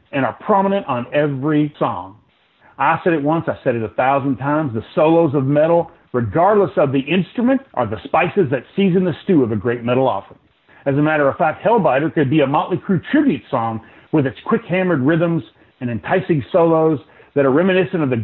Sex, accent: male, American